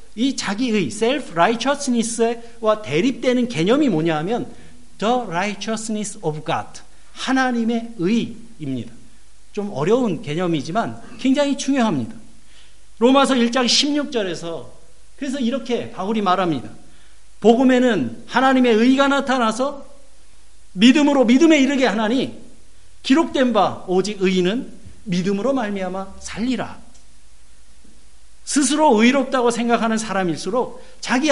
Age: 50-69